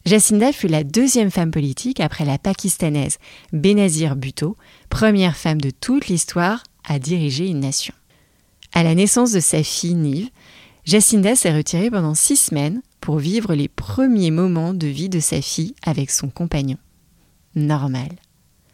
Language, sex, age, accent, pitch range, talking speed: French, female, 30-49, French, 155-200 Hz, 150 wpm